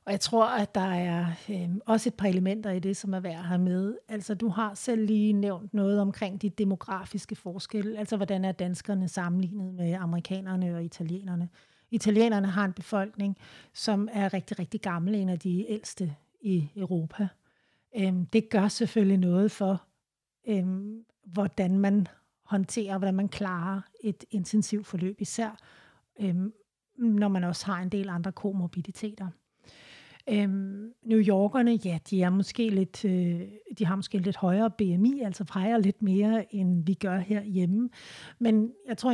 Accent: native